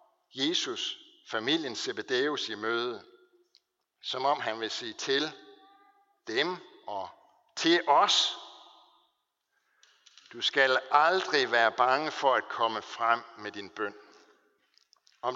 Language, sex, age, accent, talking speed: Danish, male, 60-79, native, 110 wpm